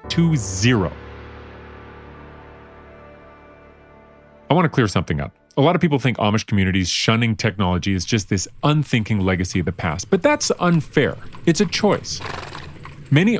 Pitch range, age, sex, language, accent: 100-160 Hz, 30-49, male, English, American